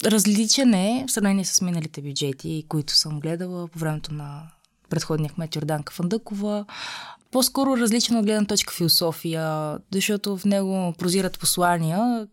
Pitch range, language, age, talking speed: 160-185 Hz, Bulgarian, 20-39, 135 wpm